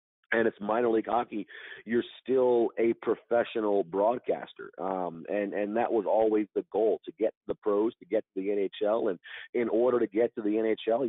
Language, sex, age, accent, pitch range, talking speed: English, male, 40-59, American, 100-115 Hz, 190 wpm